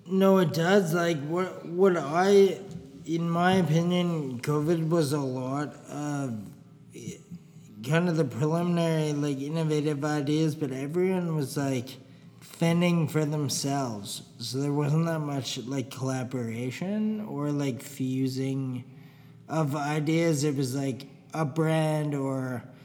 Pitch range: 135-160 Hz